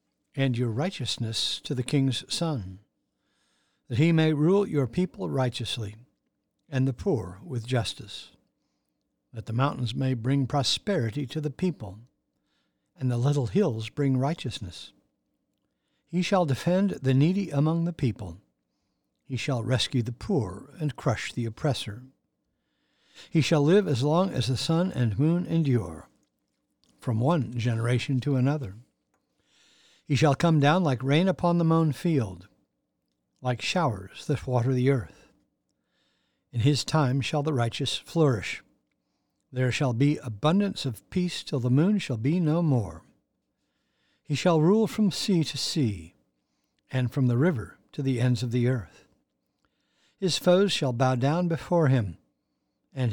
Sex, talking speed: male, 145 wpm